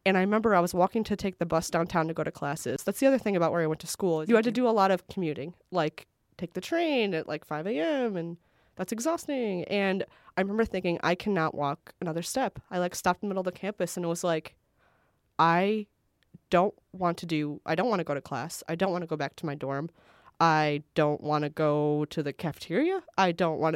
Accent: American